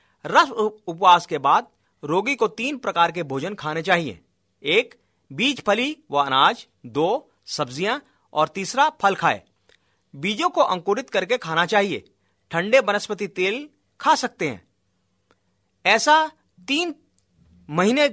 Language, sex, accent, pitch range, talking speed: Hindi, male, native, 150-230 Hz, 125 wpm